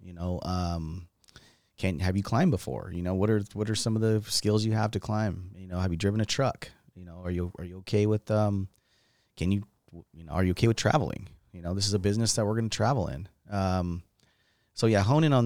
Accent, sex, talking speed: American, male, 250 wpm